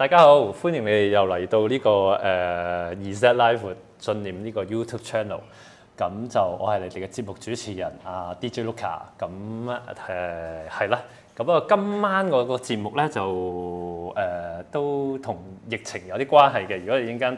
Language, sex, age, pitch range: Chinese, male, 20-39, 95-135 Hz